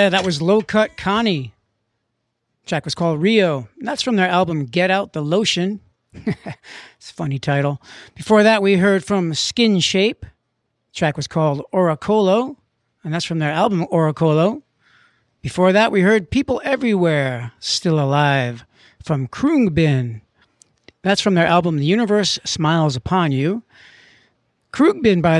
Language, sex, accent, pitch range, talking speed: English, male, American, 150-205 Hz, 145 wpm